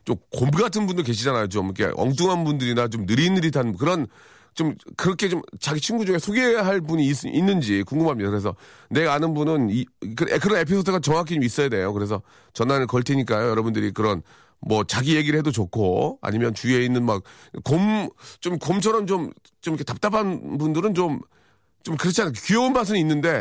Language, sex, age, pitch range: Korean, male, 40-59, 110-160 Hz